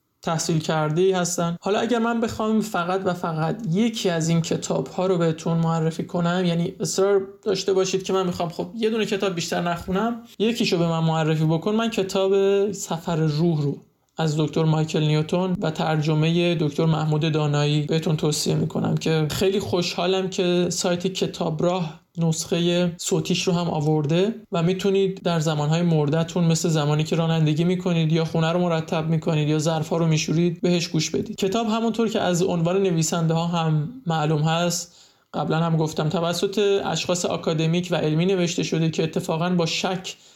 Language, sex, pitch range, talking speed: Persian, male, 160-190 Hz, 170 wpm